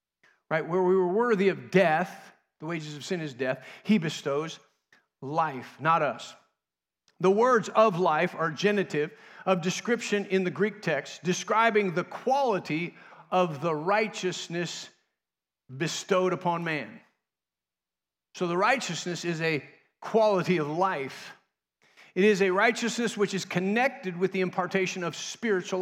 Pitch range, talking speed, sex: 160-205 Hz, 135 wpm, male